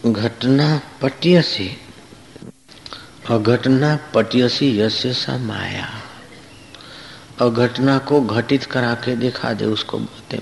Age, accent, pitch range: 60-79, native, 115-130 Hz